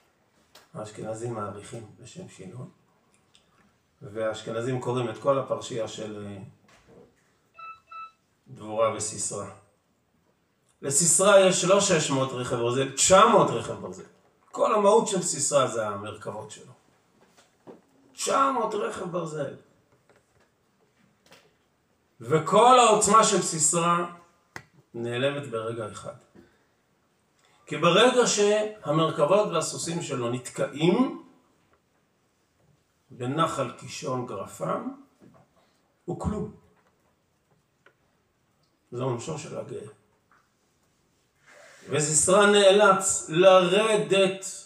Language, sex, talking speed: Hebrew, male, 75 wpm